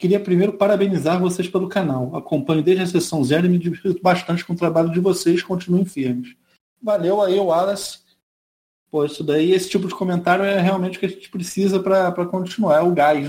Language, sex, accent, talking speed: Portuguese, male, Brazilian, 195 wpm